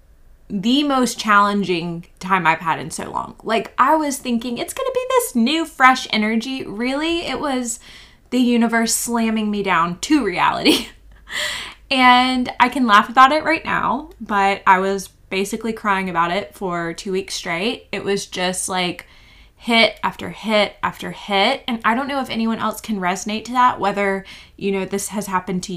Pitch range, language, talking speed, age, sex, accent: 190-240 Hz, English, 175 wpm, 20-39, female, American